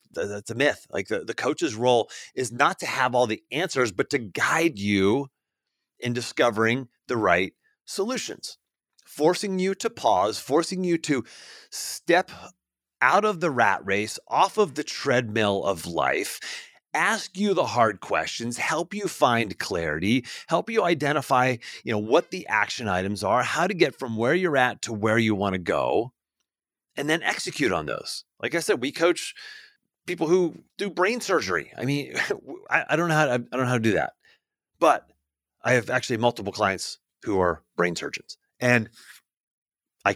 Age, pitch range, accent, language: 30-49, 105-160 Hz, American, English